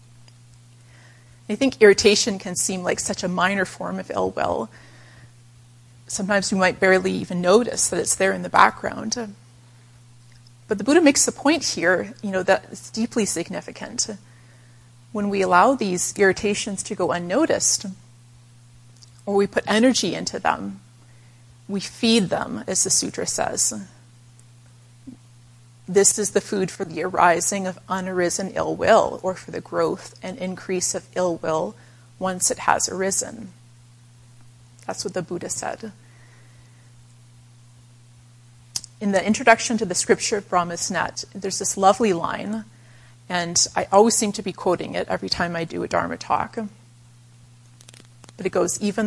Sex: female